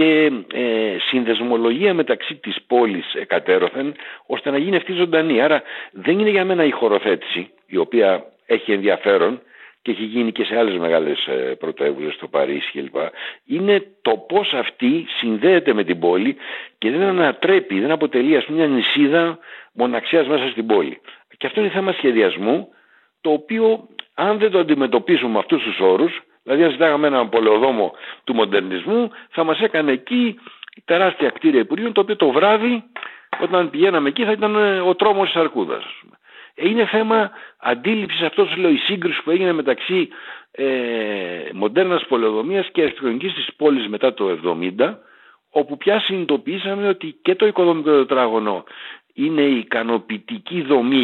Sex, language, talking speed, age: male, Greek, 155 wpm, 60-79